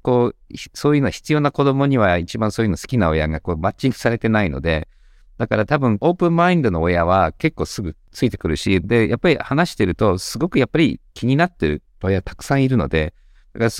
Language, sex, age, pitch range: Japanese, male, 50-69, 80-115 Hz